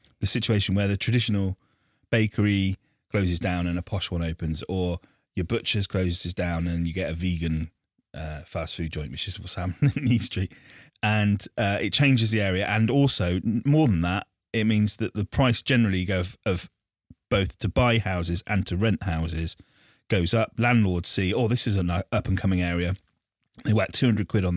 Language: English